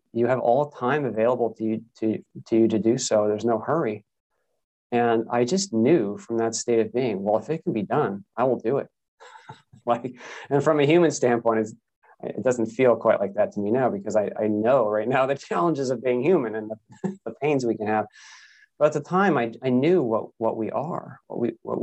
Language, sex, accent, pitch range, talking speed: English, male, American, 110-140 Hz, 225 wpm